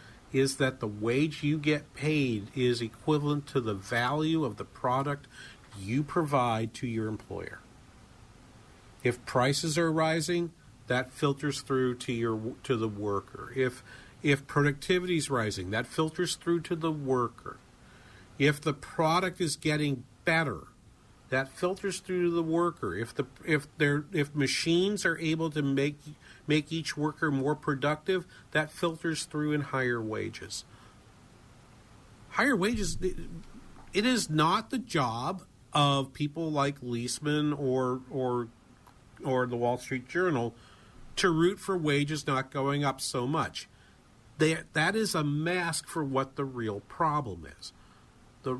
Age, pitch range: 50-69, 125-160 Hz